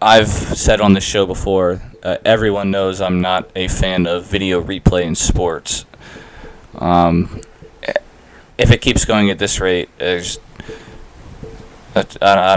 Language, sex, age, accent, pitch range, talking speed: English, male, 20-39, American, 90-115 Hz, 130 wpm